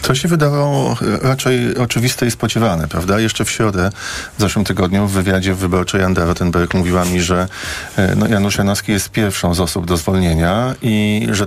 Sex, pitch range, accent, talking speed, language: male, 95-110 Hz, native, 180 wpm, Polish